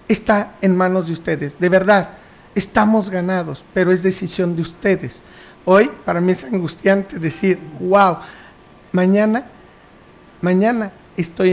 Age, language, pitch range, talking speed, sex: 50-69, Spanish, 165-190 Hz, 125 wpm, male